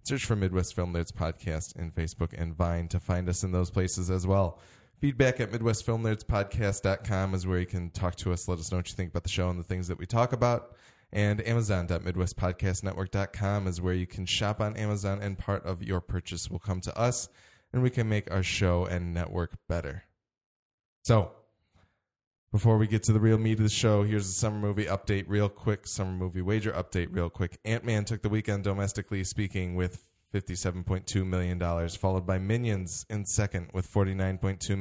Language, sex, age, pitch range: English, male, 10-29, 90-105 Hz